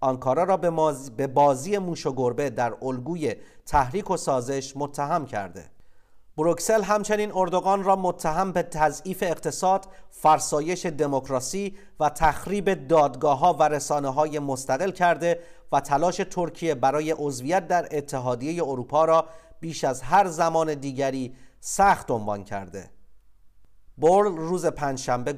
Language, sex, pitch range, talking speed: Persian, male, 130-180 Hz, 125 wpm